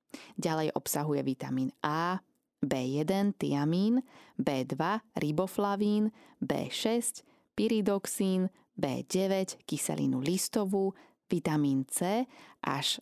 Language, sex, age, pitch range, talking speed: Slovak, female, 20-39, 145-200 Hz, 75 wpm